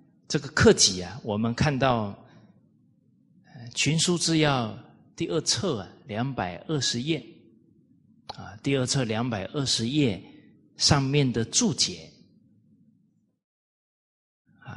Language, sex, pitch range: Chinese, male, 115-155 Hz